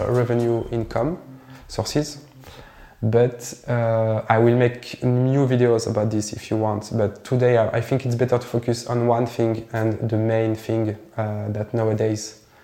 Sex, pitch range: male, 110-125 Hz